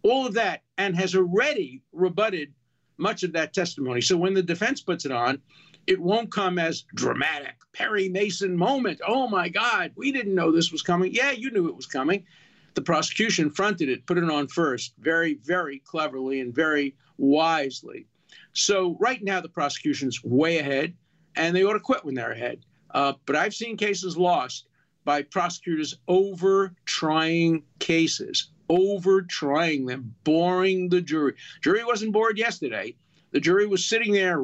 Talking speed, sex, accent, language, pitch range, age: 165 wpm, male, American, English, 145-190 Hz, 50-69